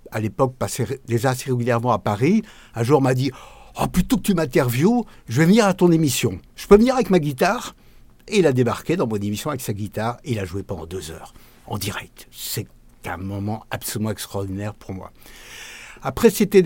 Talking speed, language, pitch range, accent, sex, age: 215 wpm, French, 115-150 Hz, French, male, 60-79